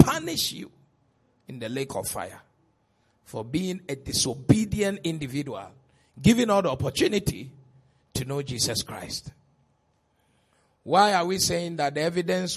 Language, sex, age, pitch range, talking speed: English, male, 50-69, 130-195 Hz, 130 wpm